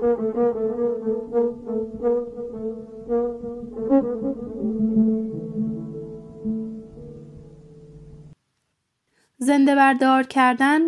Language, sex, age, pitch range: Persian, female, 20-39, 205-230 Hz